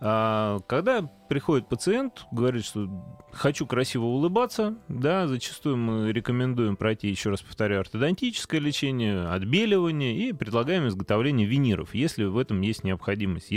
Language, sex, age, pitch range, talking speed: Russian, male, 20-39, 105-140 Hz, 125 wpm